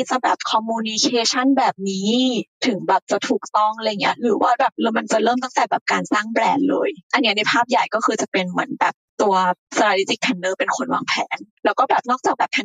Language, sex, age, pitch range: Thai, female, 20-39, 195-255 Hz